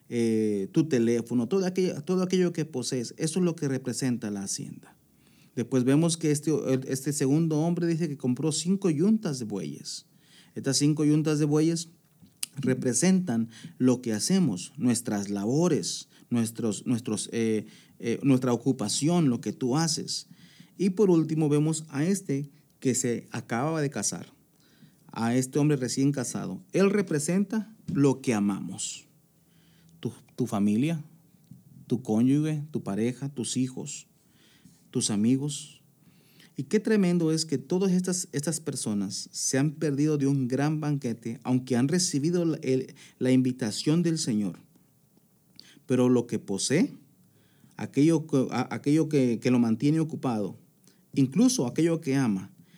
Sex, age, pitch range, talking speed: male, 40-59, 125-165 Hz, 140 wpm